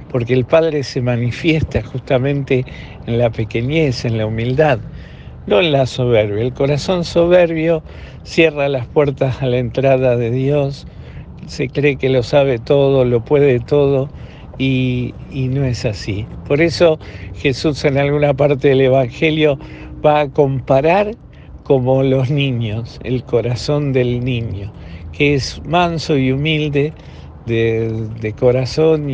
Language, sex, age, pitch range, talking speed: Spanish, male, 50-69, 115-145 Hz, 140 wpm